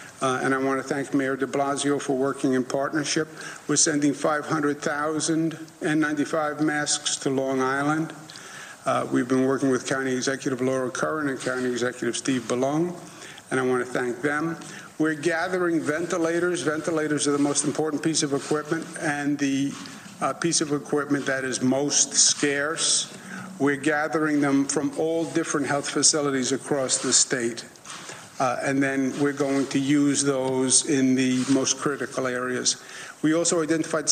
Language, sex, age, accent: English, male, 50-69, American